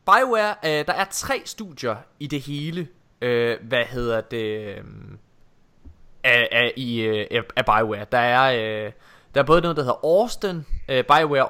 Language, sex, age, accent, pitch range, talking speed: Danish, male, 20-39, native, 120-165 Hz, 165 wpm